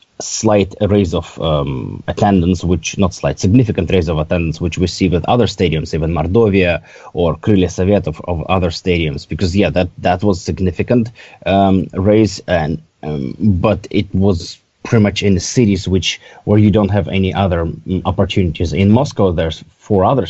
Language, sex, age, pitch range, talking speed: English, male, 30-49, 90-105 Hz, 170 wpm